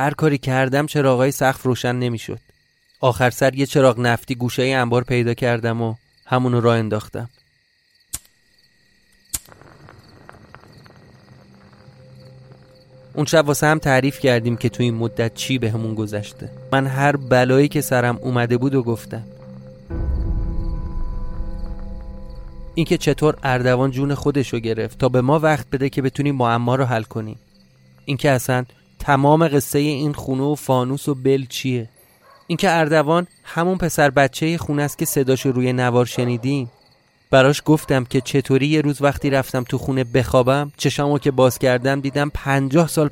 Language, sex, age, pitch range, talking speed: Persian, male, 30-49, 115-140 Hz, 140 wpm